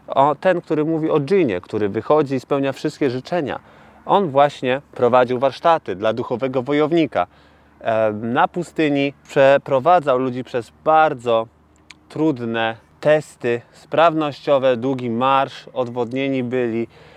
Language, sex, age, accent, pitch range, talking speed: Polish, male, 30-49, native, 120-160 Hz, 110 wpm